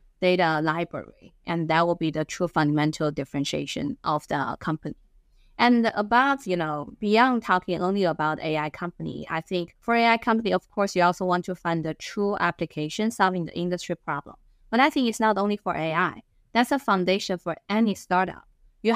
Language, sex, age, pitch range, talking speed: English, female, 20-39, 165-205 Hz, 180 wpm